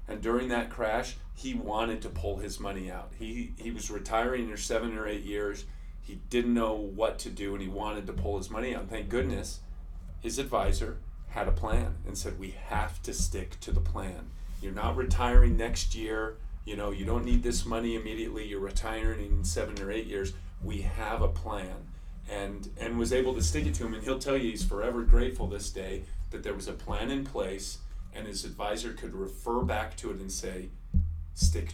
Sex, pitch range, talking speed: male, 85-115 Hz, 210 wpm